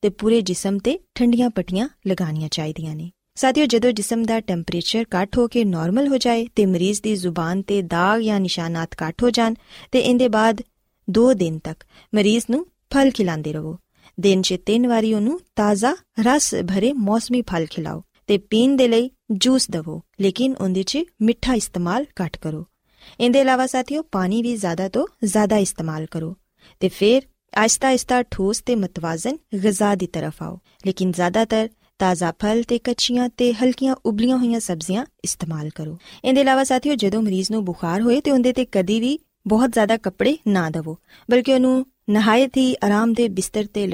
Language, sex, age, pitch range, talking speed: Punjabi, female, 20-39, 185-245 Hz, 105 wpm